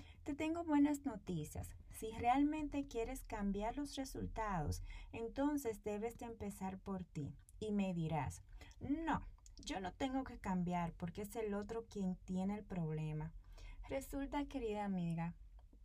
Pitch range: 160-230 Hz